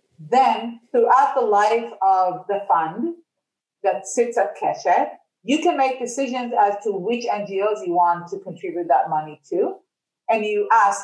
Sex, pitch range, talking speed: female, 200-265 Hz, 160 wpm